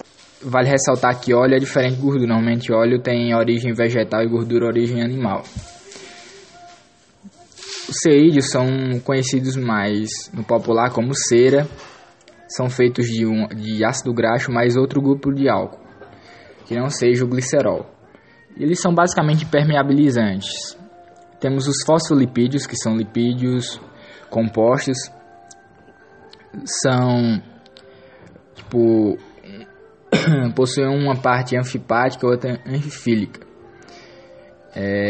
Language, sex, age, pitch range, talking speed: English, male, 20-39, 115-135 Hz, 110 wpm